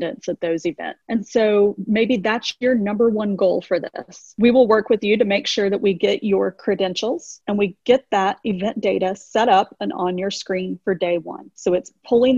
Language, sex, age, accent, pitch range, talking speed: English, female, 30-49, American, 190-235 Hz, 215 wpm